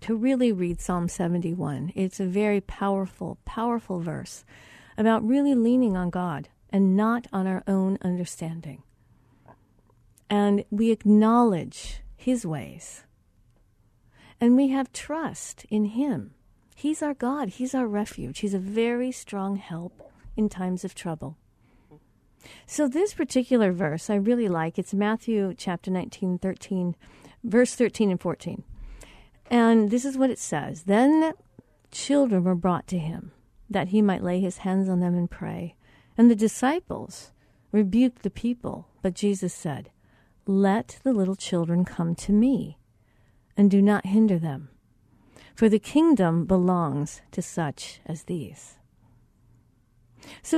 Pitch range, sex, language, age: 165-230 Hz, female, English, 50-69